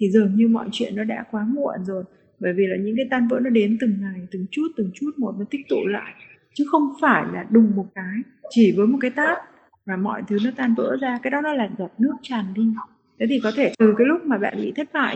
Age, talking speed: 20-39, 275 wpm